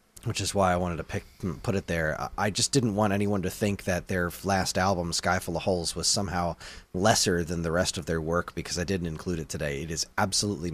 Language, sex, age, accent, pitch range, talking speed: English, male, 30-49, American, 85-110 Hz, 240 wpm